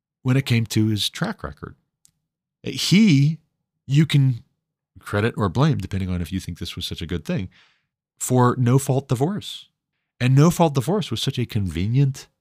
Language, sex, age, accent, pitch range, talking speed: English, male, 30-49, American, 90-135 Hz, 175 wpm